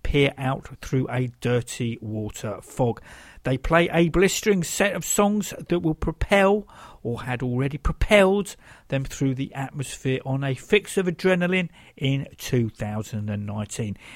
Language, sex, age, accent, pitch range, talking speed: English, male, 50-69, British, 130-185 Hz, 135 wpm